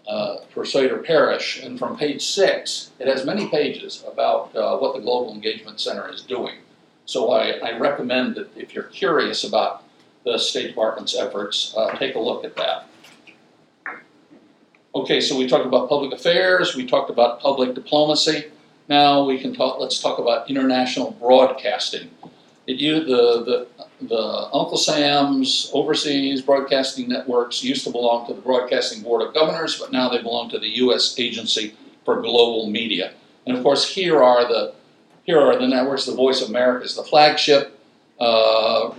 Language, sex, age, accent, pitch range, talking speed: English, male, 50-69, American, 125-145 Hz, 165 wpm